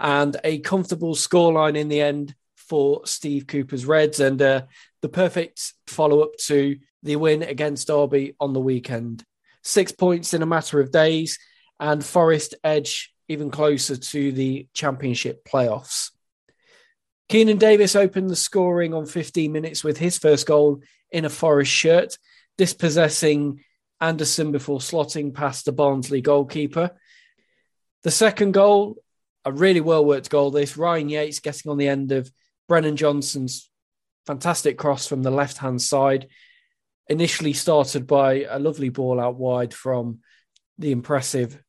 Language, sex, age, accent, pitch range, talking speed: English, male, 20-39, British, 140-175 Hz, 145 wpm